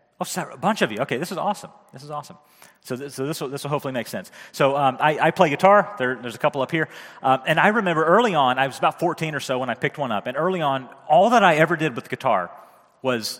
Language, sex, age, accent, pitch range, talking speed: English, male, 30-49, American, 135-180 Hz, 280 wpm